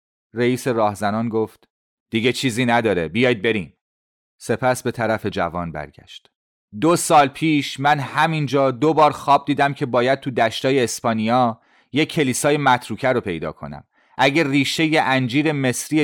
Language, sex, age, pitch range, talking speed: Persian, male, 30-49, 95-130 Hz, 140 wpm